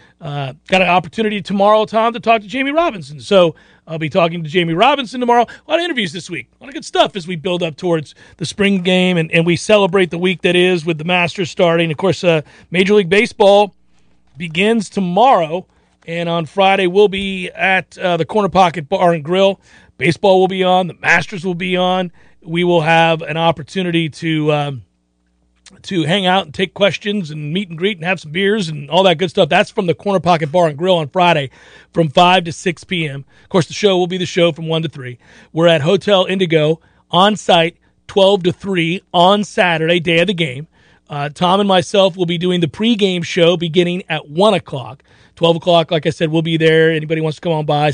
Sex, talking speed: male, 220 wpm